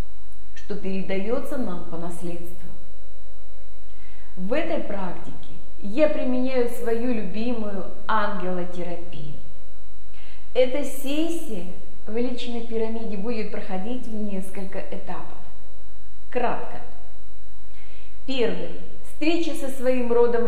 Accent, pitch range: native, 190-260 Hz